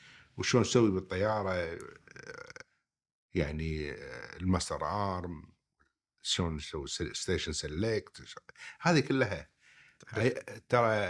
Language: Arabic